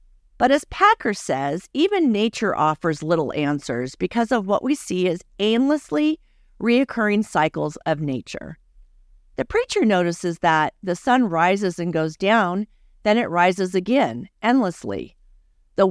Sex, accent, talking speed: female, American, 135 wpm